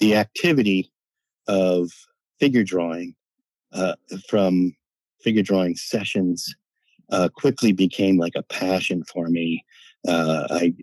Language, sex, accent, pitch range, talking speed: English, male, American, 90-100 Hz, 110 wpm